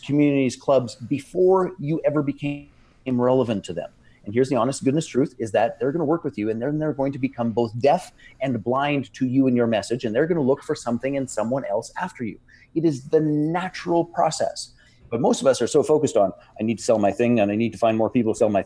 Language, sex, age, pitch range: English, male, 30-49, 120-155 Hz